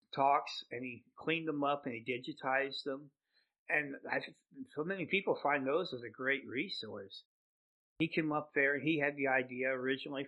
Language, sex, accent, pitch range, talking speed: English, male, American, 130-150 Hz, 180 wpm